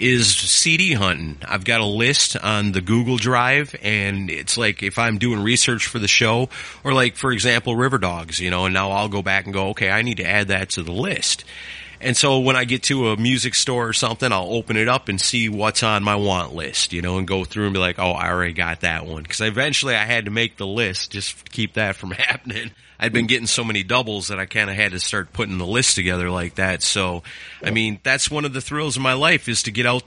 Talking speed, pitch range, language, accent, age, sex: 255 wpm, 100-130 Hz, English, American, 30-49, male